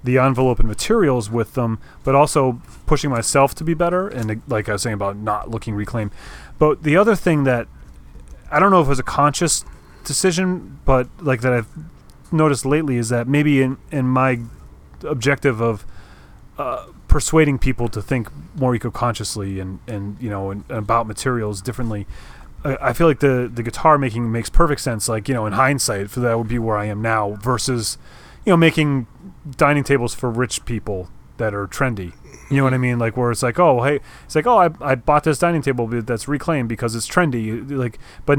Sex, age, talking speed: male, 30-49, 200 wpm